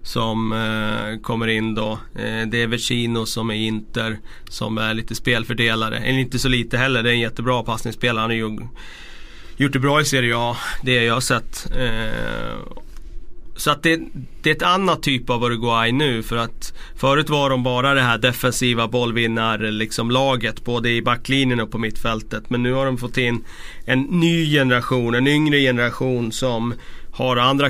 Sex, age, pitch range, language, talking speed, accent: male, 30-49, 110-130 Hz, Swedish, 180 wpm, native